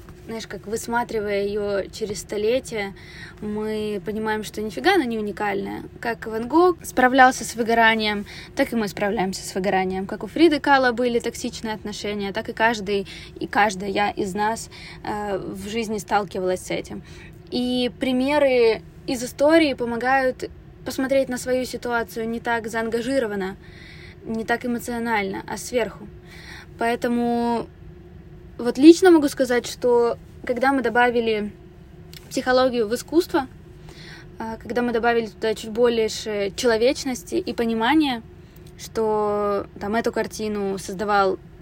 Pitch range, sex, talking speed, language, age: 205-245 Hz, female, 125 wpm, Ukrainian, 20-39